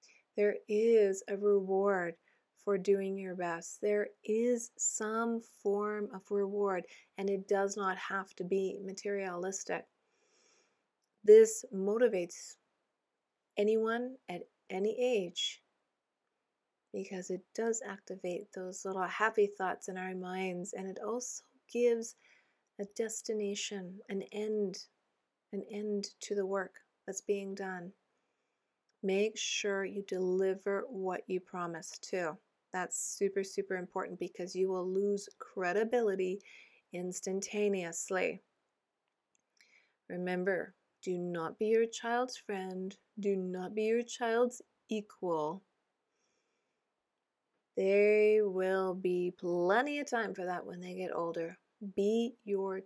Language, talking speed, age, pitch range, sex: English, 115 wpm, 30-49, 185-215 Hz, female